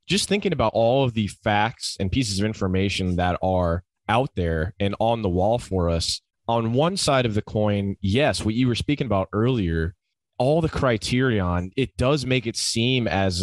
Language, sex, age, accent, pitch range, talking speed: English, male, 20-39, American, 95-115 Hz, 190 wpm